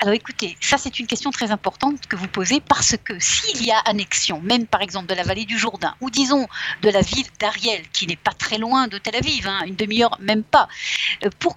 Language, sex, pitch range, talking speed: French, female, 210-295 Hz, 235 wpm